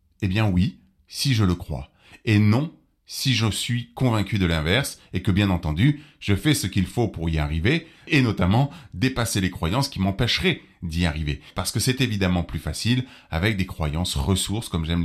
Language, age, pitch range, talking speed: French, 30-49, 90-130 Hz, 190 wpm